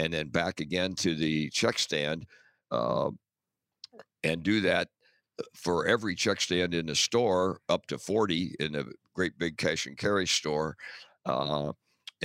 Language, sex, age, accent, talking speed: English, male, 60-79, American, 150 wpm